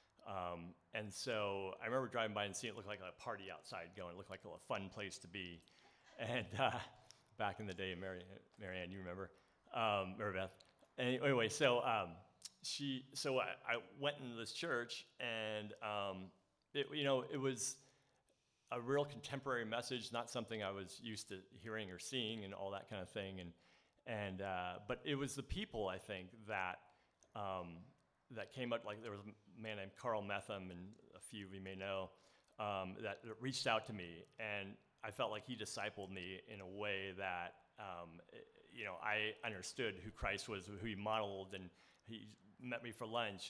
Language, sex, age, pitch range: English, male, 40-59, 95-115 Hz